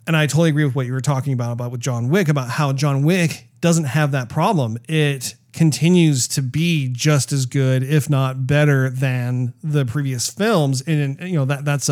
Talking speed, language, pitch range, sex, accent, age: 205 wpm, English, 125-155 Hz, male, American, 40-59